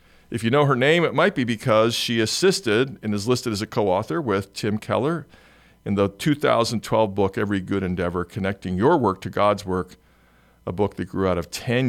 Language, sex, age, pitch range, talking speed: English, male, 50-69, 95-120 Hz, 200 wpm